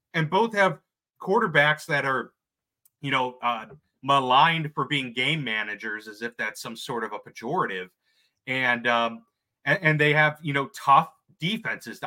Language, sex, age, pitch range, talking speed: English, male, 30-49, 120-155 Hz, 160 wpm